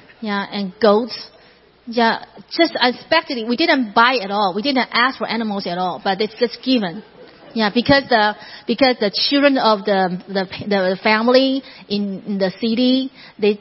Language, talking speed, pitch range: English, 170 wpm, 200-235 Hz